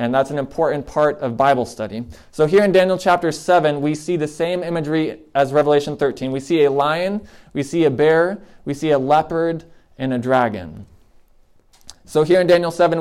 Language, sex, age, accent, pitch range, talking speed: English, male, 20-39, American, 140-170 Hz, 195 wpm